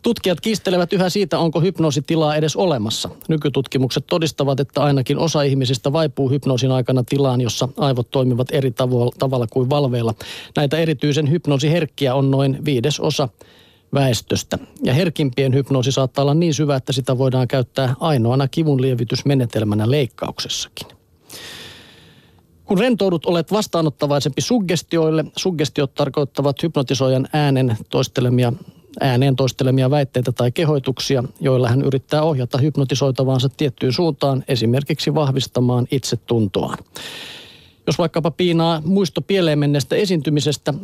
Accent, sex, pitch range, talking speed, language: native, male, 130-155 Hz, 115 wpm, Finnish